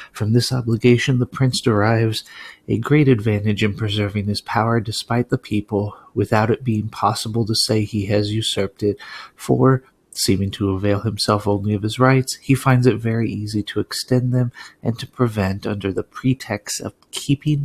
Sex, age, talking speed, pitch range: male, 30-49, 175 wpm, 100-120 Hz